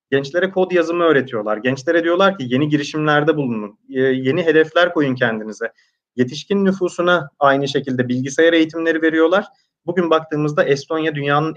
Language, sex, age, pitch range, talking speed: Turkish, male, 30-49, 130-170 Hz, 130 wpm